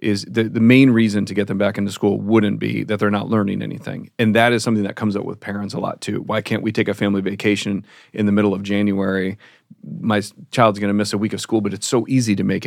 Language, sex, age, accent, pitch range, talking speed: English, male, 40-59, American, 95-110 Hz, 270 wpm